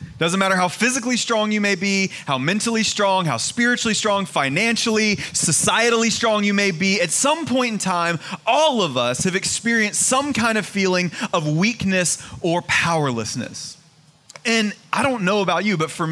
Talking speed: 170 wpm